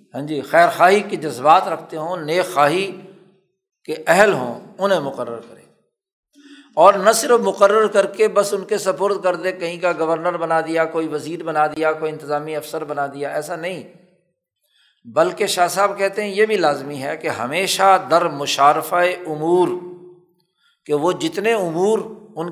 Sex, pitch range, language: male, 160-195 Hz, Urdu